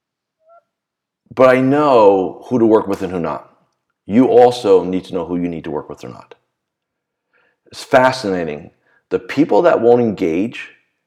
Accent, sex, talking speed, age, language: American, male, 165 wpm, 40-59, English